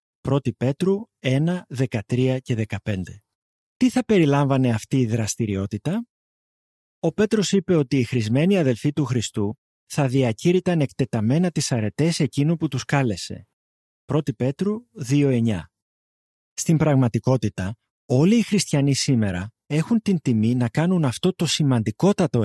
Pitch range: 115-160 Hz